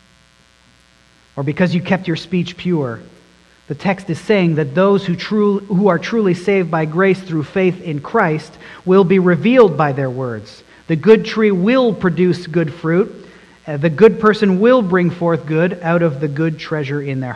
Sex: male